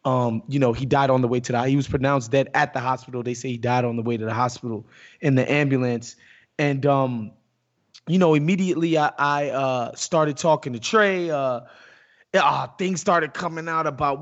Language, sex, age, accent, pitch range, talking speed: English, male, 20-39, American, 140-175 Hz, 205 wpm